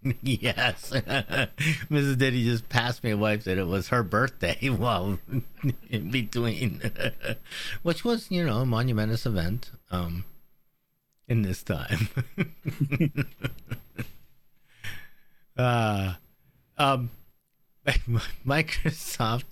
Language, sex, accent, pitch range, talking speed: English, male, American, 100-135 Hz, 90 wpm